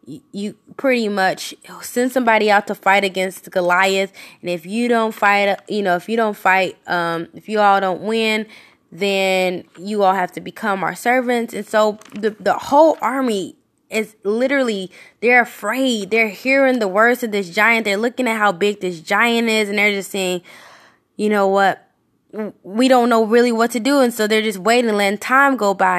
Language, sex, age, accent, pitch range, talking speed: English, female, 10-29, American, 200-245 Hz, 190 wpm